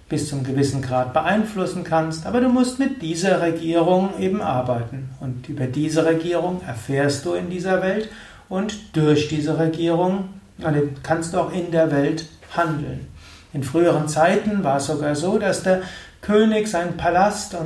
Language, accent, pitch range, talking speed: German, German, 140-185 Hz, 160 wpm